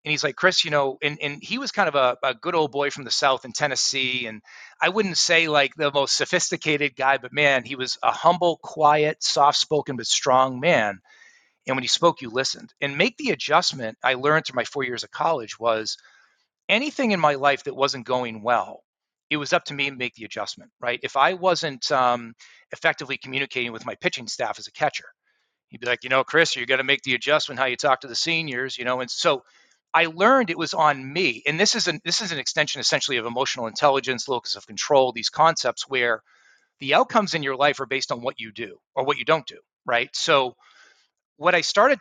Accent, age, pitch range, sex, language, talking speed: American, 40-59, 130-170 Hz, male, English, 225 wpm